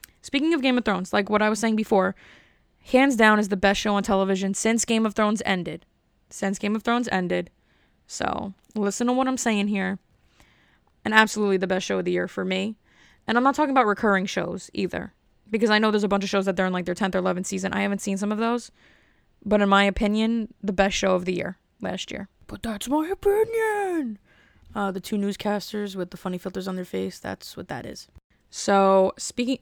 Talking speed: 225 wpm